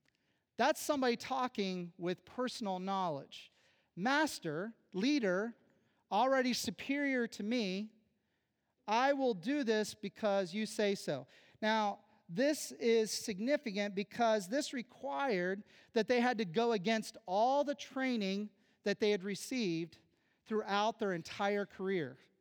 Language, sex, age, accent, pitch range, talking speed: English, male, 40-59, American, 195-250 Hz, 120 wpm